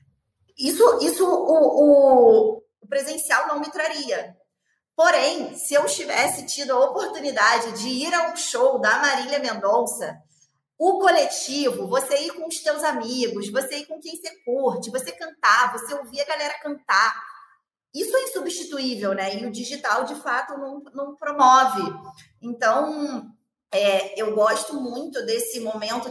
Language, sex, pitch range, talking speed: Portuguese, female, 230-315 Hz, 140 wpm